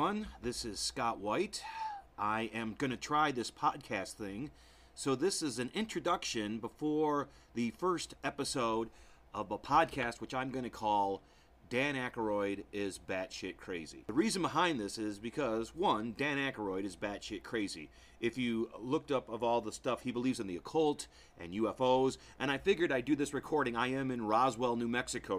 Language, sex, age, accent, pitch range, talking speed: English, male, 40-59, American, 110-150 Hz, 175 wpm